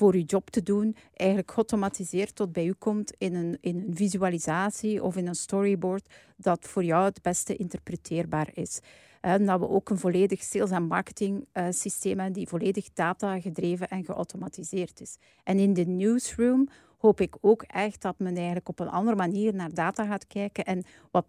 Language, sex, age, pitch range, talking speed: Dutch, female, 40-59, 180-205 Hz, 190 wpm